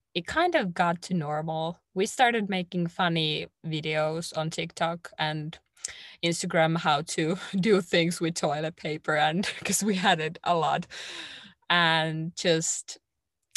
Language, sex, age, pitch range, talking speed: English, female, 20-39, 160-195 Hz, 135 wpm